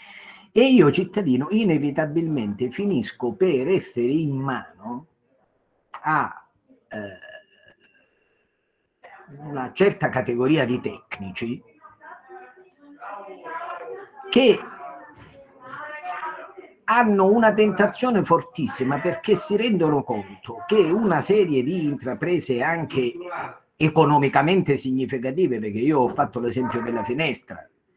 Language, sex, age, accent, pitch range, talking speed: Italian, male, 50-69, native, 125-190 Hz, 85 wpm